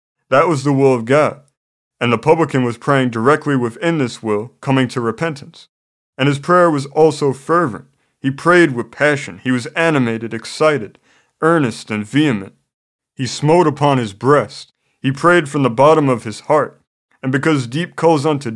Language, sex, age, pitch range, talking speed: English, male, 30-49, 120-150 Hz, 170 wpm